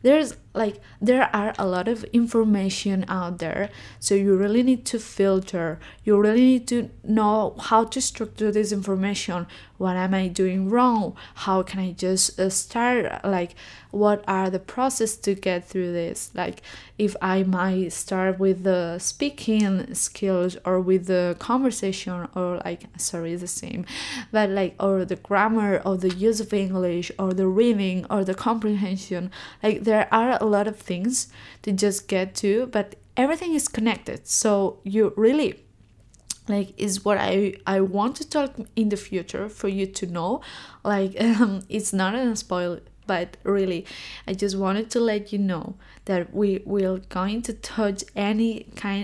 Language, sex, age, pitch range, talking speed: English, female, 20-39, 185-220 Hz, 170 wpm